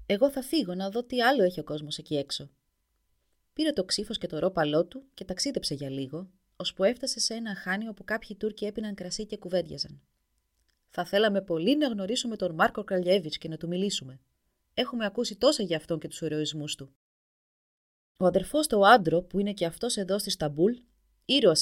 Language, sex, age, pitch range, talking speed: Greek, female, 30-49, 155-230 Hz, 190 wpm